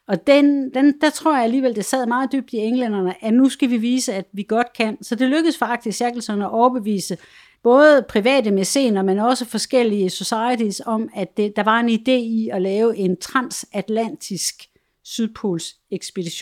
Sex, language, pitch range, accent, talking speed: female, Danish, 200-260 Hz, native, 180 wpm